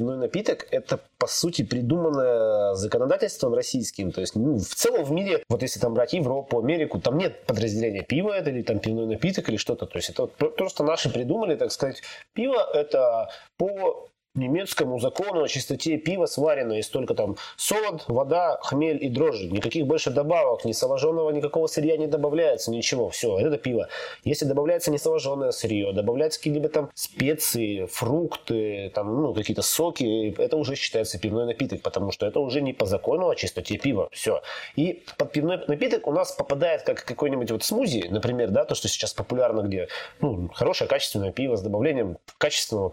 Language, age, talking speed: Russian, 20-39, 175 wpm